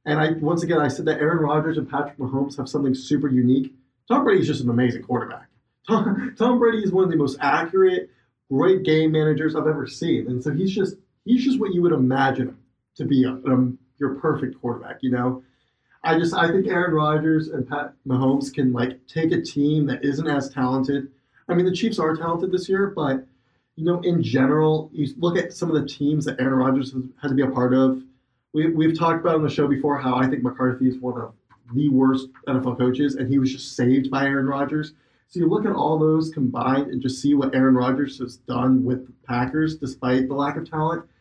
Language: English